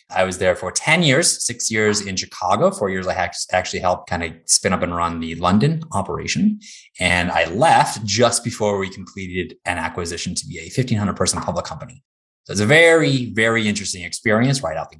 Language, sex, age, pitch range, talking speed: English, male, 20-39, 95-145 Hz, 195 wpm